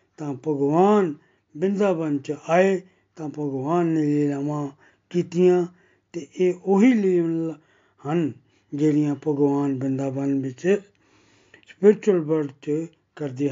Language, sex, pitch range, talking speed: Punjabi, male, 145-180 Hz, 105 wpm